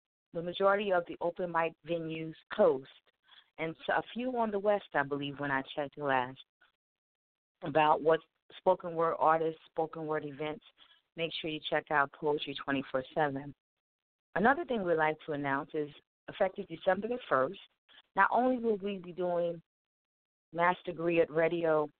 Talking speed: 155 wpm